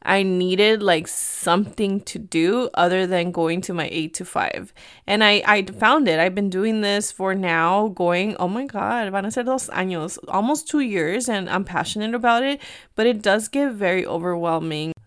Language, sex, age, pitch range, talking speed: English, female, 20-39, 180-220 Hz, 185 wpm